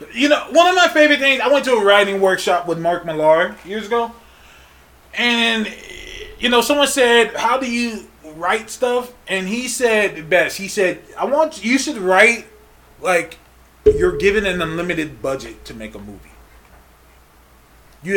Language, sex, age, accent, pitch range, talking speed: English, male, 20-39, American, 175-235 Hz, 165 wpm